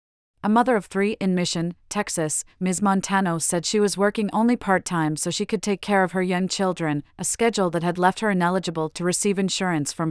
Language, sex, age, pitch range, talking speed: English, female, 30-49, 165-200 Hz, 215 wpm